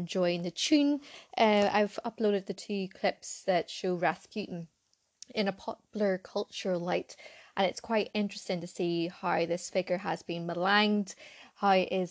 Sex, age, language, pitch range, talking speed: female, 20-39, English, 180-210 Hz, 160 wpm